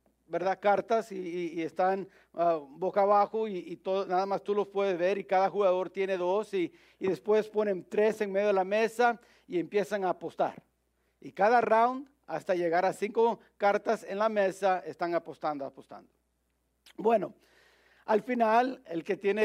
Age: 50-69